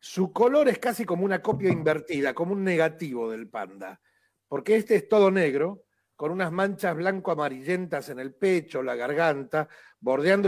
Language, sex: Spanish, male